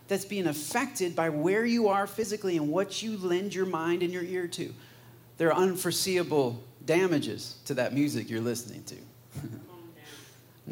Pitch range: 125-185 Hz